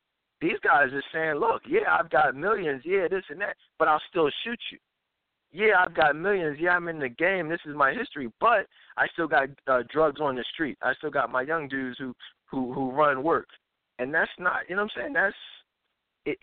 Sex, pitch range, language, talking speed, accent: male, 130-180 Hz, English, 225 wpm, American